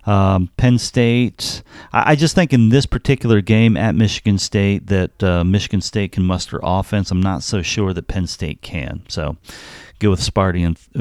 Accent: American